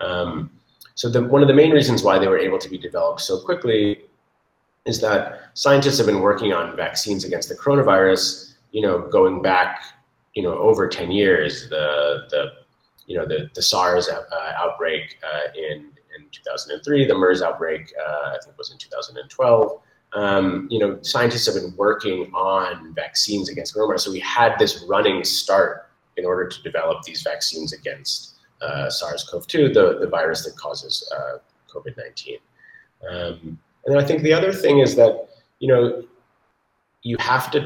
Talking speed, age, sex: 170 wpm, 30-49, male